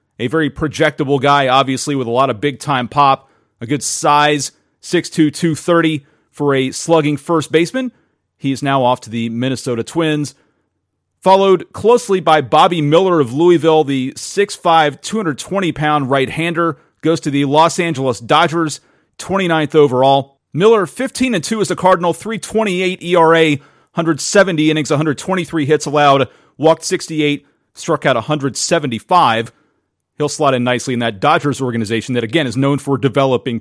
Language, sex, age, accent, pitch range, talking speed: English, male, 40-59, American, 135-165 Hz, 140 wpm